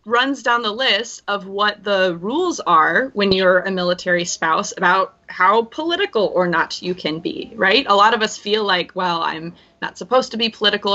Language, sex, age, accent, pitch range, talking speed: English, female, 20-39, American, 175-225 Hz, 195 wpm